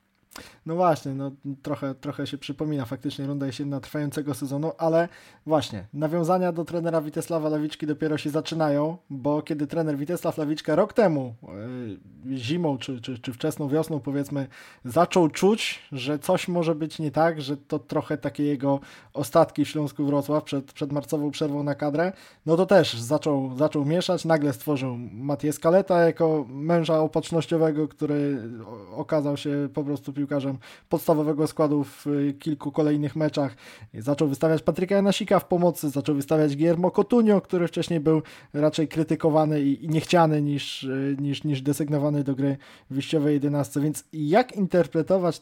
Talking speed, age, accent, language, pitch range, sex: 145 wpm, 20-39, native, Polish, 140-160 Hz, male